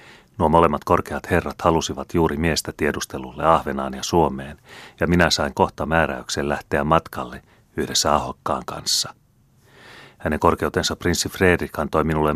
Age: 30-49